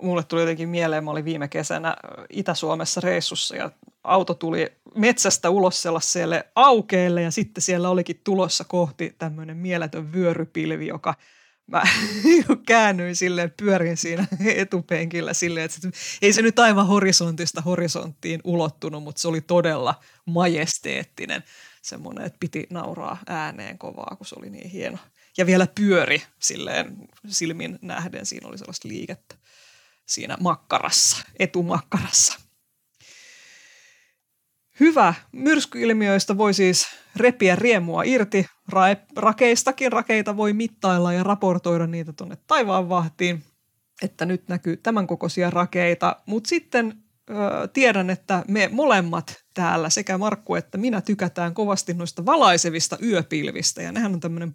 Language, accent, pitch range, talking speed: Finnish, native, 170-210 Hz, 125 wpm